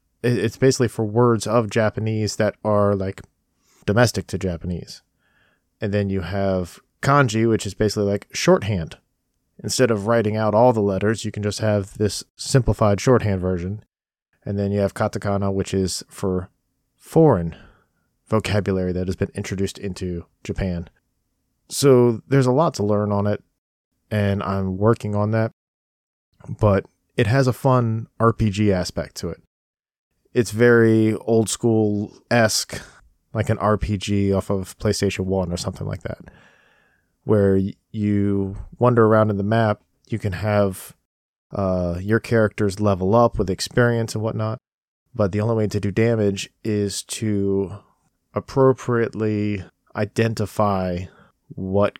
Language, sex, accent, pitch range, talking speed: English, male, American, 95-115 Hz, 140 wpm